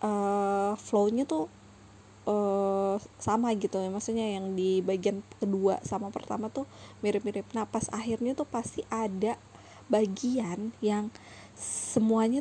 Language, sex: Indonesian, female